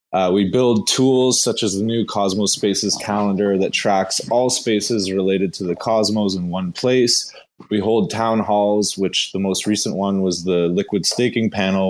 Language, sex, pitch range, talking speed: English, male, 95-110 Hz, 180 wpm